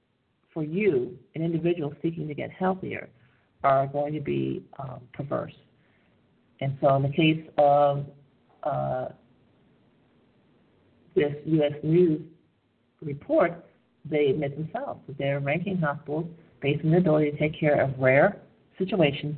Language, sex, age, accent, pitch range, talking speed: English, female, 50-69, American, 140-165 Hz, 130 wpm